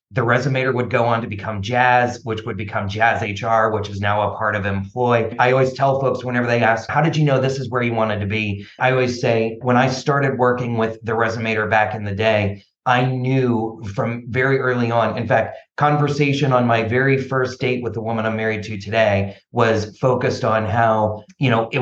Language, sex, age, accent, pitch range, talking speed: English, male, 30-49, American, 110-125 Hz, 220 wpm